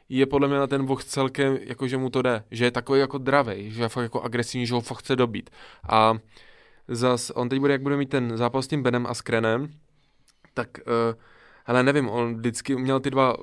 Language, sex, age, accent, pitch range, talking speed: Czech, male, 20-39, native, 115-130 Hz, 220 wpm